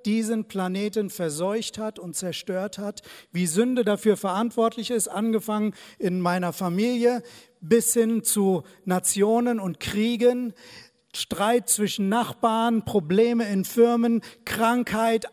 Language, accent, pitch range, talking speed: German, German, 185-245 Hz, 115 wpm